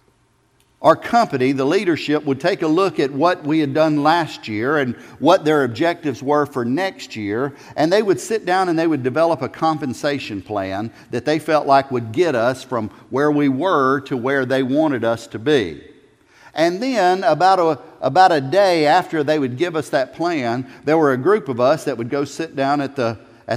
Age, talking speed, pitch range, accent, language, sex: 50-69, 200 wpm, 130-185 Hz, American, English, male